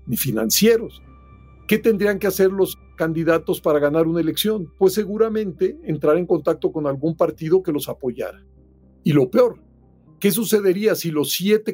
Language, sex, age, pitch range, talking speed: Spanish, male, 50-69, 145-185 Hz, 160 wpm